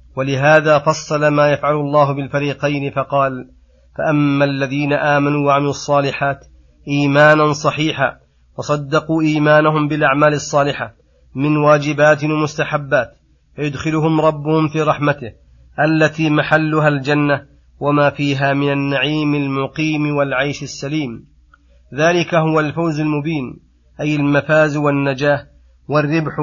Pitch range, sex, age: 140-155 Hz, male, 30-49